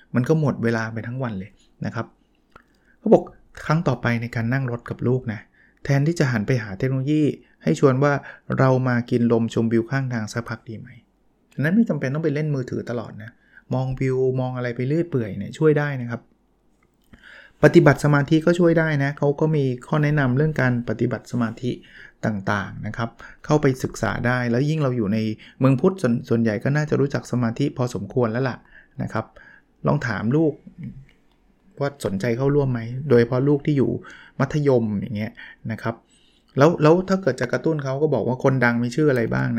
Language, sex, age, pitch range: Thai, male, 20-39, 115-145 Hz